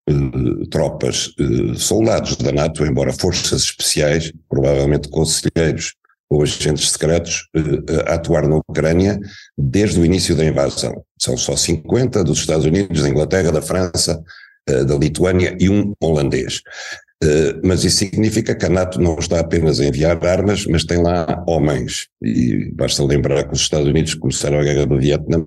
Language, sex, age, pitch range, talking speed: Portuguese, male, 60-79, 75-90 Hz, 150 wpm